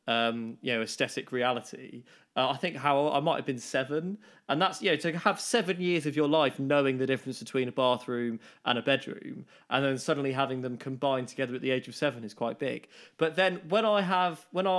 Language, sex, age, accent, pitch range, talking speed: English, male, 20-39, British, 135-170 Hz, 225 wpm